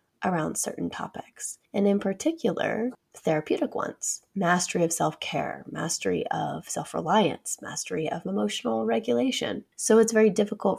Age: 20-39